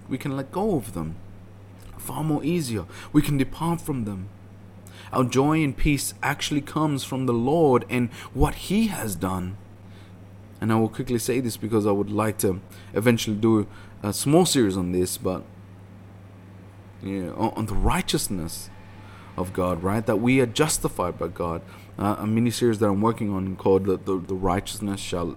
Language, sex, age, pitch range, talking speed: English, male, 30-49, 95-135 Hz, 175 wpm